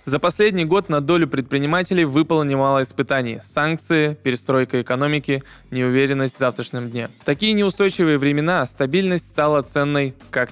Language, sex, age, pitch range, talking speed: Russian, male, 20-39, 135-175 Hz, 135 wpm